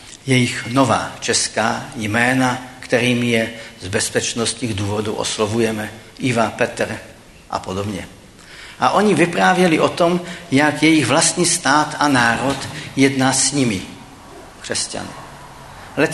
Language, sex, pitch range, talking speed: Czech, male, 115-155 Hz, 110 wpm